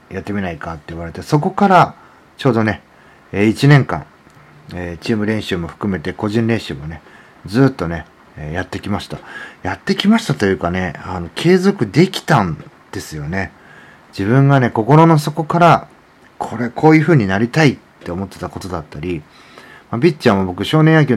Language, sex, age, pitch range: Japanese, male, 40-59, 90-140 Hz